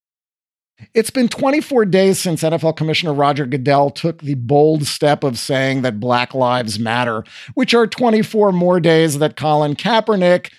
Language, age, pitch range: English, 50-69, 145-205 Hz